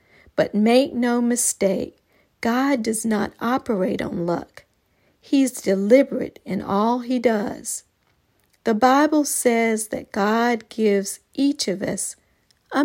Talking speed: 120 wpm